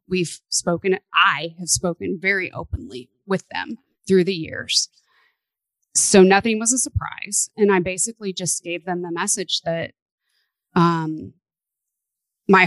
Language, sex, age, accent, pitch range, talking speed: English, female, 30-49, American, 170-195 Hz, 135 wpm